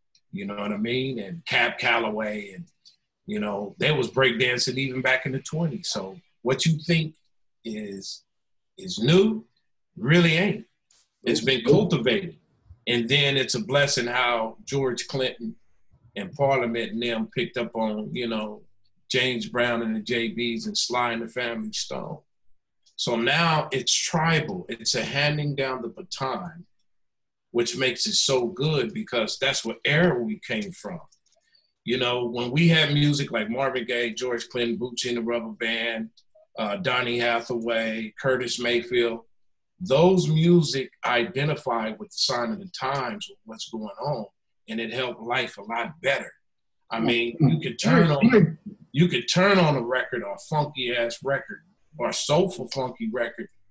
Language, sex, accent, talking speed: English, male, American, 160 wpm